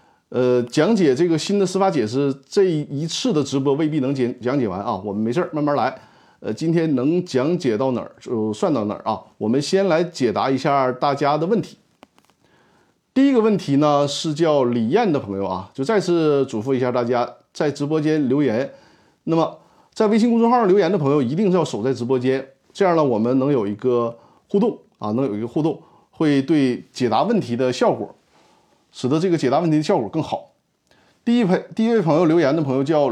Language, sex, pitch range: Chinese, male, 125-180 Hz